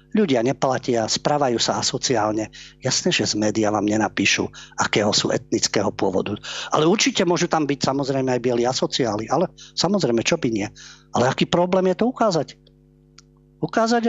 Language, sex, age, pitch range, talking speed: Slovak, male, 50-69, 125-170 Hz, 155 wpm